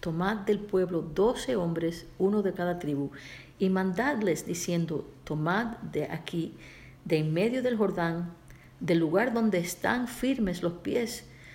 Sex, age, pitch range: female, 50-69, 155-190 Hz